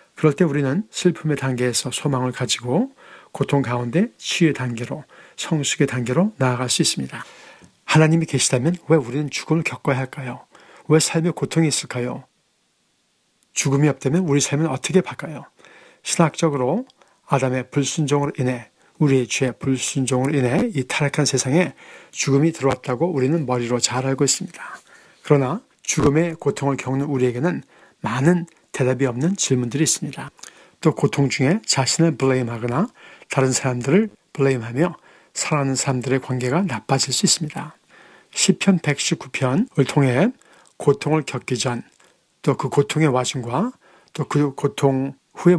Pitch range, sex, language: 130-165 Hz, male, Korean